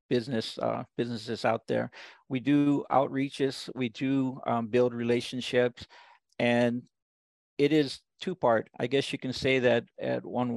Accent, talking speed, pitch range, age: American, 150 wpm, 120-130 Hz, 50-69